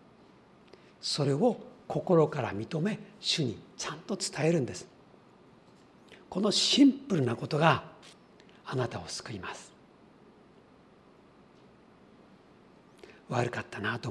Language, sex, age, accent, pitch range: Japanese, male, 50-69, native, 125-195 Hz